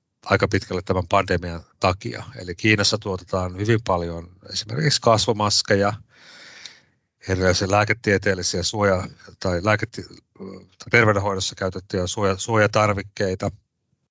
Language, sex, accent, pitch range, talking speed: Finnish, male, native, 95-115 Hz, 90 wpm